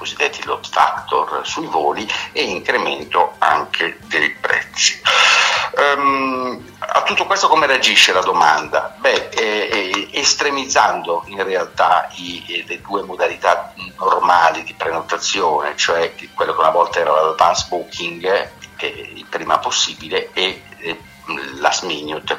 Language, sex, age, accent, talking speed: Italian, male, 60-79, native, 120 wpm